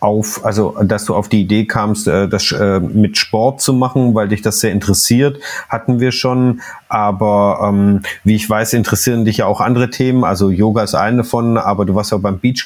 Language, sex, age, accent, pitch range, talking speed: German, male, 30-49, German, 105-120 Hz, 205 wpm